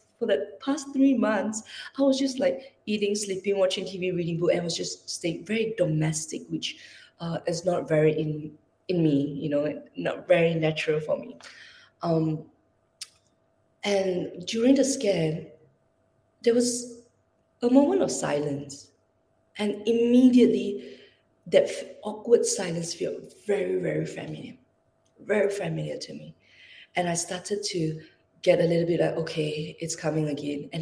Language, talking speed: English, 145 wpm